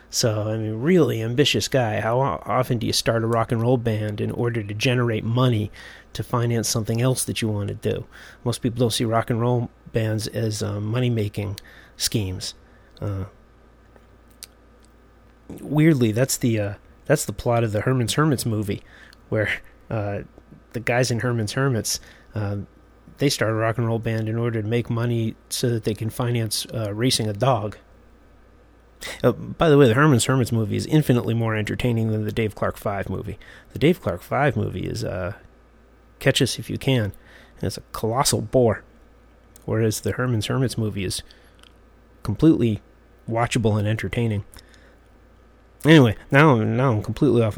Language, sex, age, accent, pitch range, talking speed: English, male, 30-49, American, 105-125 Hz, 170 wpm